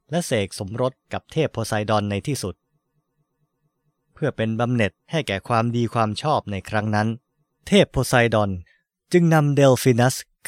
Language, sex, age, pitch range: Thai, male, 20-39, 105-145 Hz